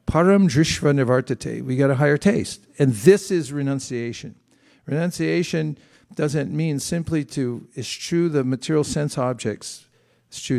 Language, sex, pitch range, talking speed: English, male, 120-150 Hz, 130 wpm